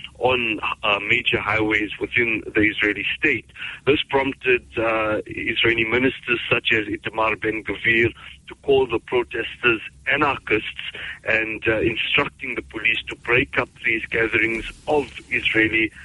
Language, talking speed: English, 125 wpm